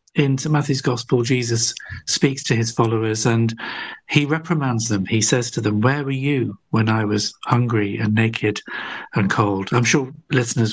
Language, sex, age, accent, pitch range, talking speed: English, male, 50-69, British, 105-135 Hz, 175 wpm